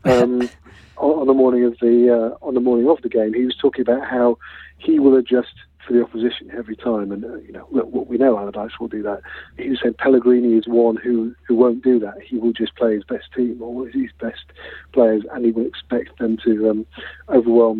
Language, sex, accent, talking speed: English, male, British, 230 wpm